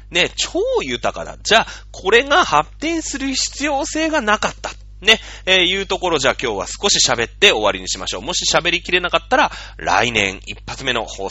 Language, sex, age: Japanese, male, 30-49